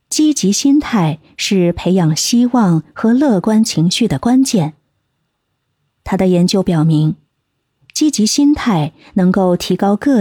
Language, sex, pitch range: Chinese, female, 155-210 Hz